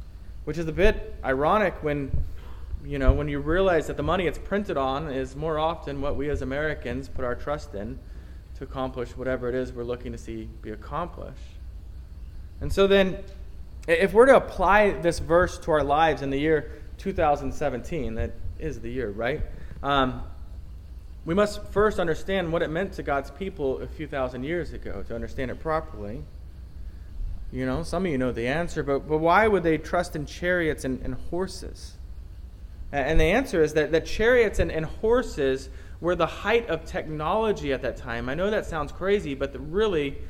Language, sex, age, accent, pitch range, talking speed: English, male, 20-39, American, 120-175 Hz, 185 wpm